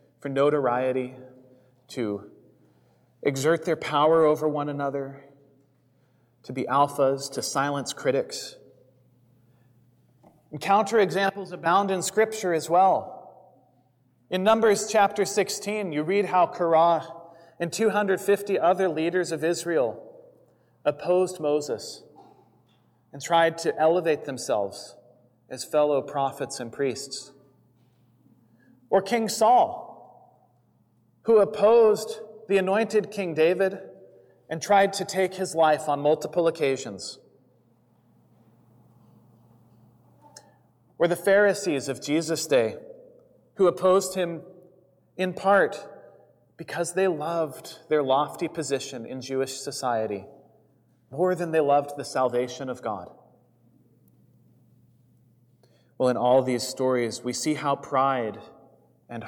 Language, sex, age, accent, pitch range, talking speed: English, male, 30-49, American, 125-185 Hz, 105 wpm